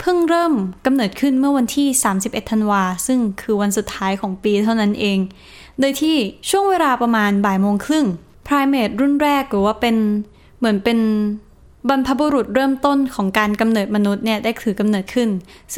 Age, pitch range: 10-29, 210-265 Hz